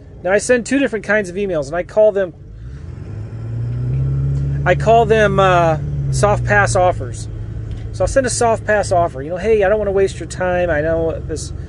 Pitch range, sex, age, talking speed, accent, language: 135-170 Hz, male, 30-49, 200 wpm, American, English